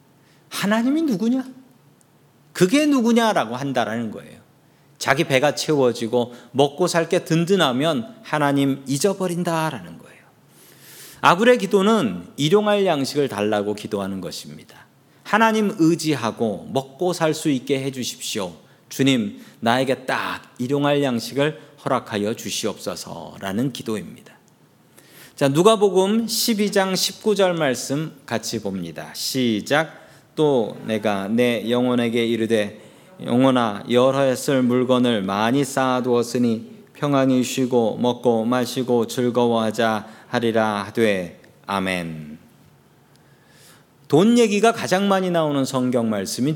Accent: native